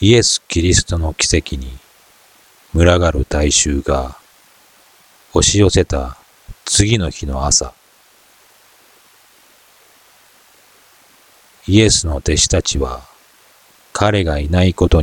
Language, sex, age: Japanese, male, 40-59